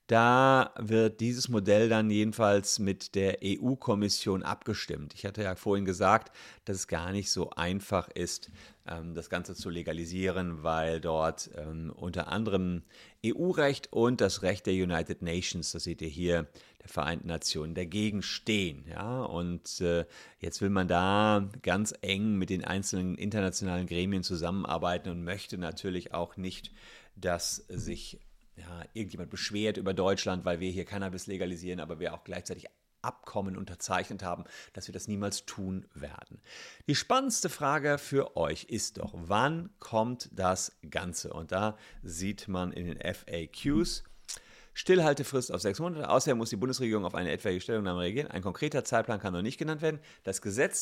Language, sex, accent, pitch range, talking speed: German, male, German, 90-115 Hz, 150 wpm